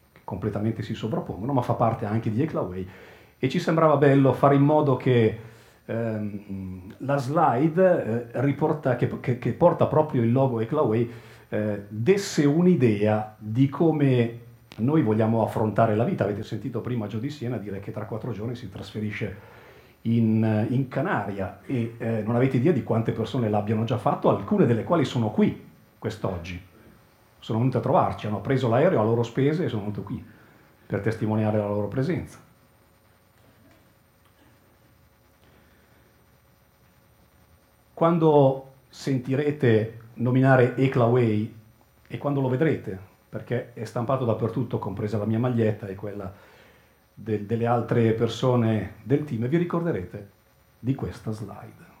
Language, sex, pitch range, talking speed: Italian, male, 110-135 Hz, 140 wpm